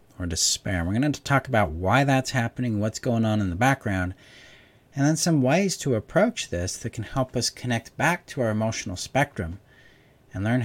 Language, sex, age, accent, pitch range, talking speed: English, male, 40-59, American, 95-130 Hz, 195 wpm